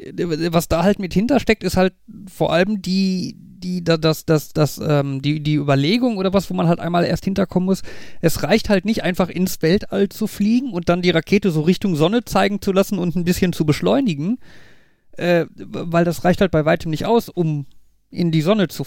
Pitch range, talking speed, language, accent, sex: 150-195 Hz, 205 wpm, German, German, male